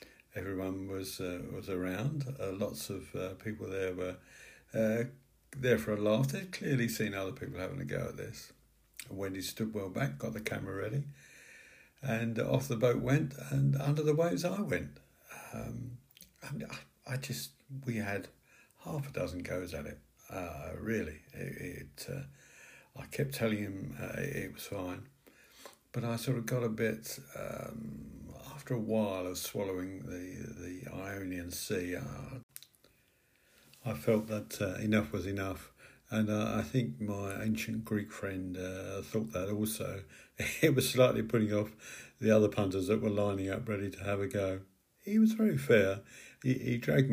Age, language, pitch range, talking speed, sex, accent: 60-79, English, 95-125 Hz, 170 wpm, male, British